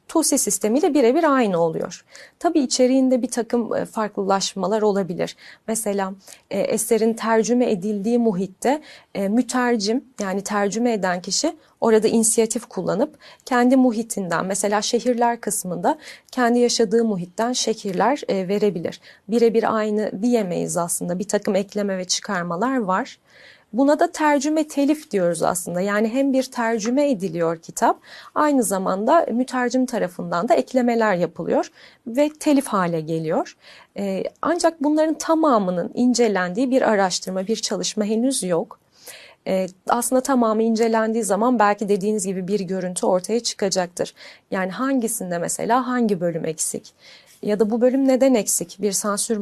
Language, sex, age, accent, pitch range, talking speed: Turkish, female, 30-49, native, 195-255 Hz, 125 wpm